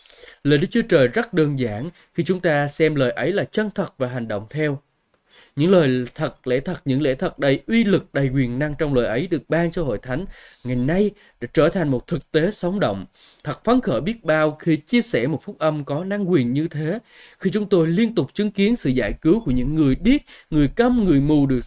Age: 20-39